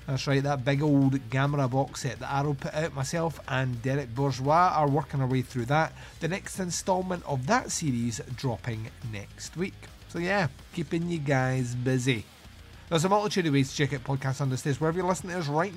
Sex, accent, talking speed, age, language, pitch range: male, British, 200 wpm, 30-49, English, 130-170 Hz